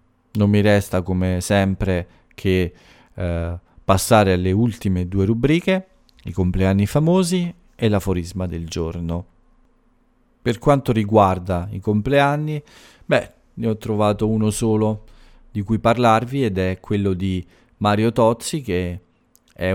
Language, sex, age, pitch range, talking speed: English, male, 40-59, 95-120 Hz, 125 wpm